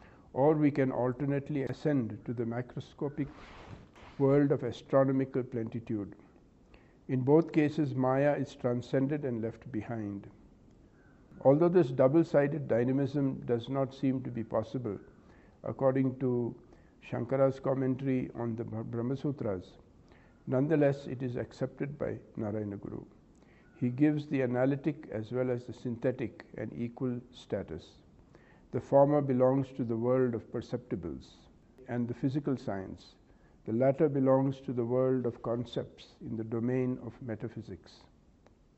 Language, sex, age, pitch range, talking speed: English, male, 60-79, 115-135 Hz, 130 wpm